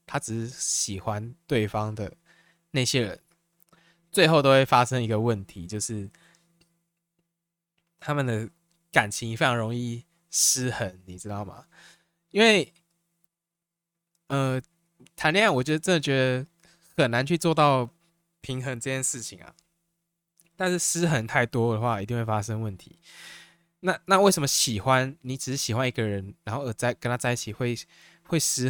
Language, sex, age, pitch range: Chinese, male, 20-39, 115-170 Hz